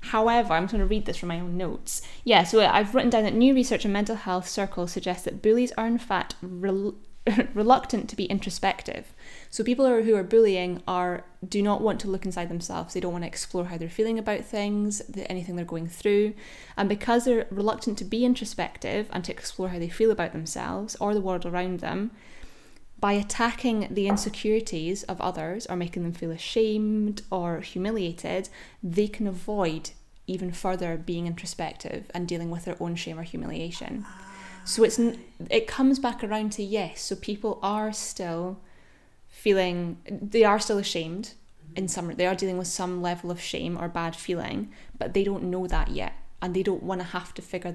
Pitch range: 175-215 Hz